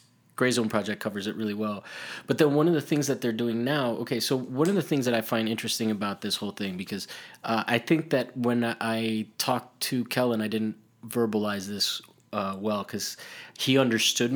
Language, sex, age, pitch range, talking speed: English, male, 20-39, 110-135 Hz, 205 wpm